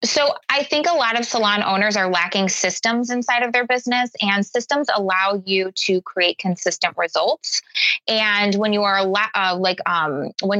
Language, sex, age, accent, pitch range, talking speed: English, female, 20-39, American, 180-225 Hz, 175 wpm